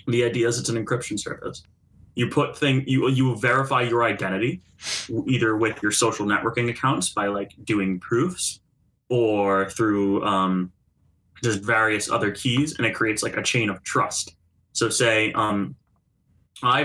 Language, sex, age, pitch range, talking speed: English, male, 20-39, 105-130 Hz, 155 wpm